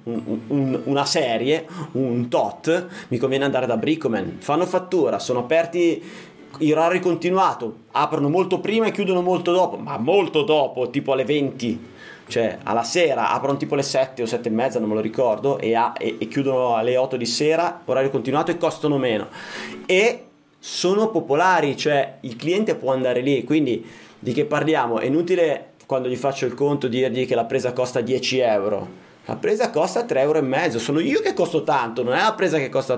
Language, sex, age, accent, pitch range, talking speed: Italian, male, 30-49, native, 115-145 Hz, 190 wpm